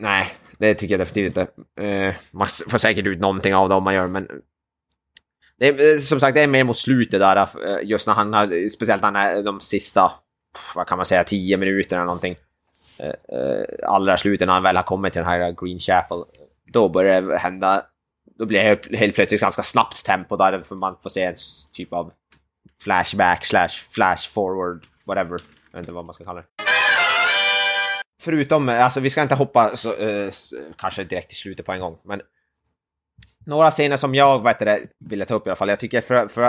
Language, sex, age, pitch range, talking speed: Swedish, male, 20-39, 90-105 Hz, 195 wpm